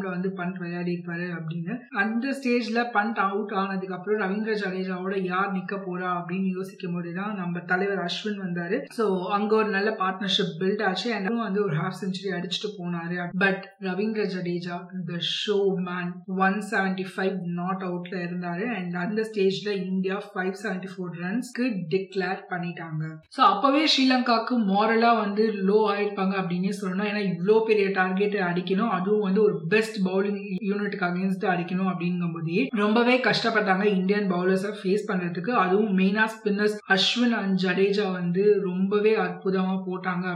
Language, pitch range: Tamil, 185-215 Hz